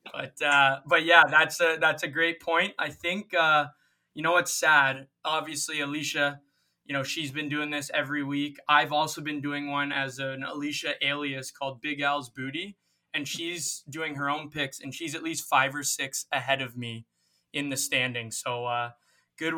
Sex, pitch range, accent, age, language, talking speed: male, 140-170 Hz, American, 20-39, English, 190 wpm